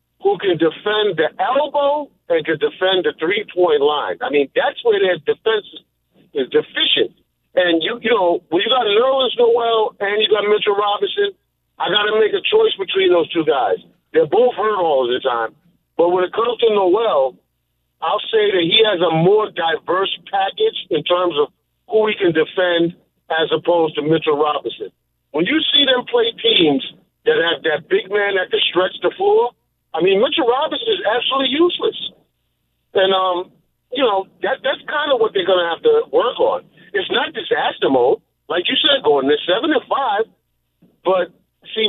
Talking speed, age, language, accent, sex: 185 wpm, 50-69, English, American, male